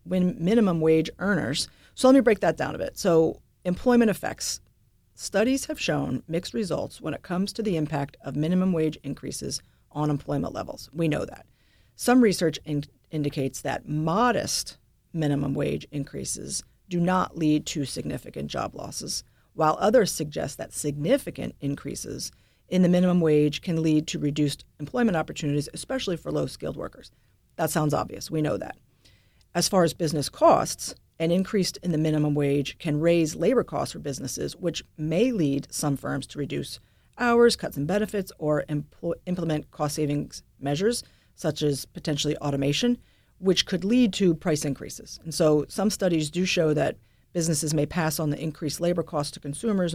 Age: 40-59